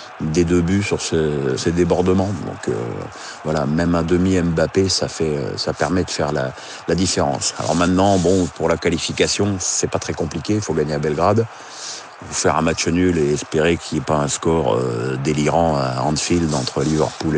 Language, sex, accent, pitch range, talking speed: French, male, French, 80-95 Hz, 195 wpm